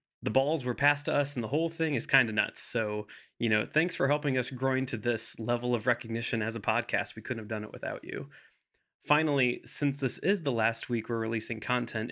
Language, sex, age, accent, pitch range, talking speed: English, male, 20-39, American, 110-140 Hz, 235 wpm